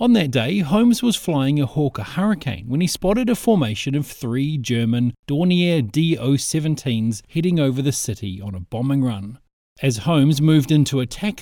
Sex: male